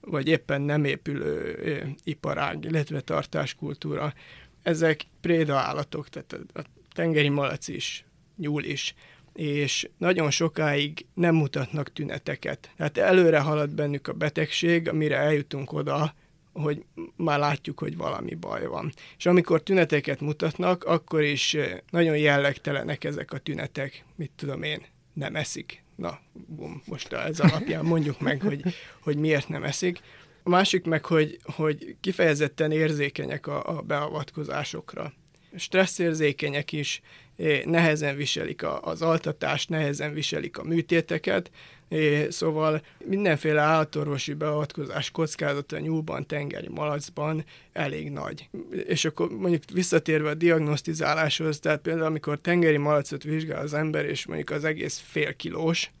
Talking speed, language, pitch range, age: 125 wpm, Hungarian, 145-165 Hz, 30-49